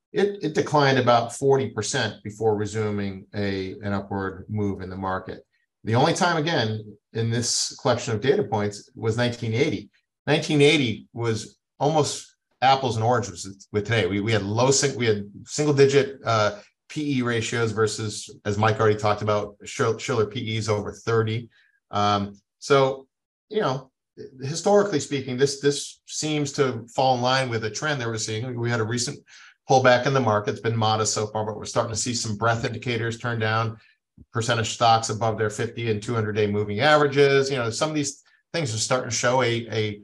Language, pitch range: English, 105-130 Hz